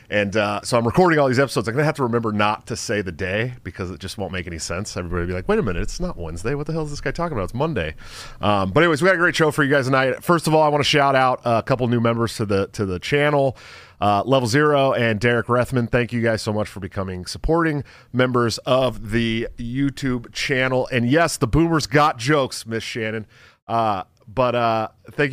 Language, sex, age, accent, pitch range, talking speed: English, male, 30-49, American, 105-145 Hz, 245 wpm